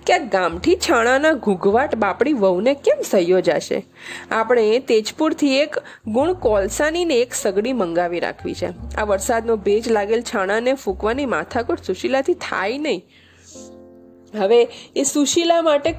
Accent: native